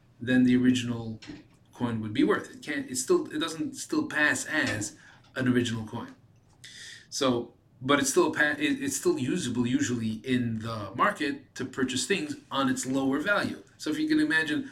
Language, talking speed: English, 170 wpm